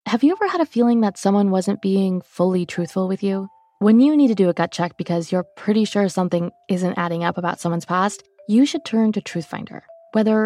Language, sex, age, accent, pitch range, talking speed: English, female, 20-39, American, 180-240 Hz, 225 wpm